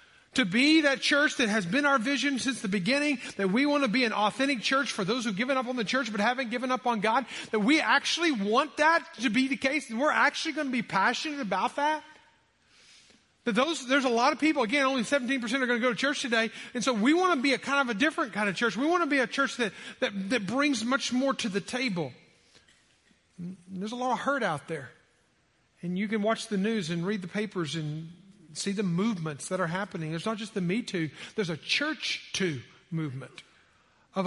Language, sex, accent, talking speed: English, male, American, 235 wpm